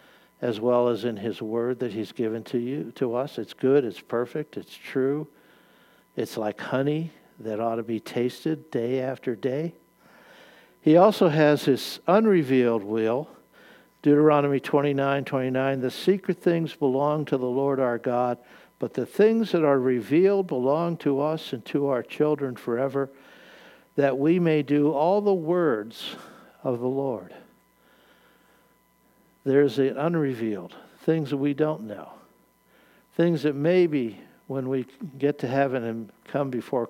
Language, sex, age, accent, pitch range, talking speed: English, male, 60-79, American, 125-150 Hz, 150 wpm